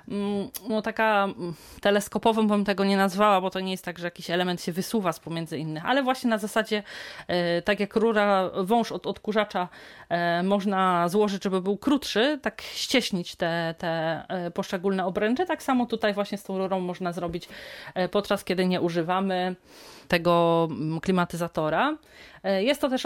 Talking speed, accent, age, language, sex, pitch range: 155 wpm, native, 30-49, Polish, female, 180-215 Hz